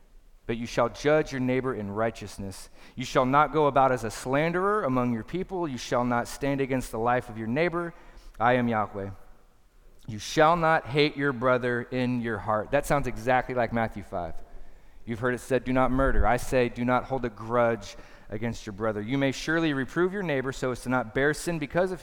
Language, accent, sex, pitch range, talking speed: English, American, male, 115-145 Hz, 210 wpm